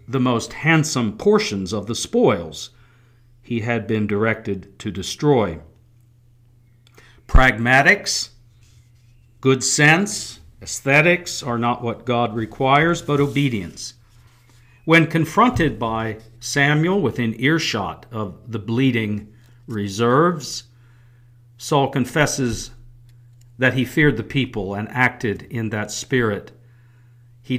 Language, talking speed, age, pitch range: English, 100 wpm, 50-69, 115-130 Hz